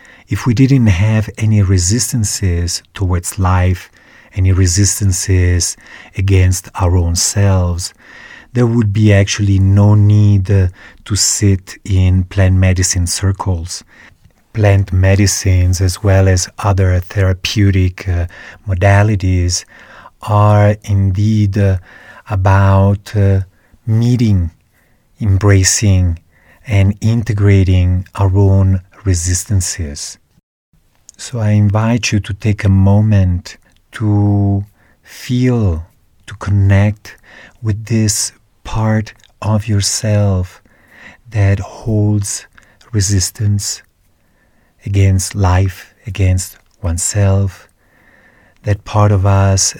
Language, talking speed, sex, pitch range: English, 90 wpm, male, 95-105 Hz